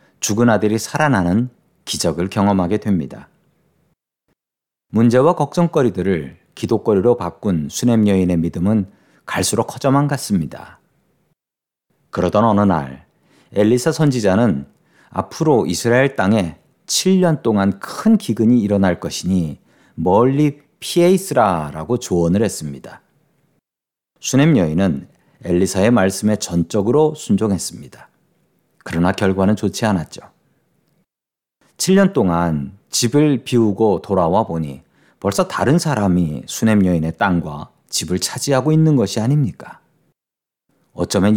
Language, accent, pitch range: Korean, native, 95-135 Hz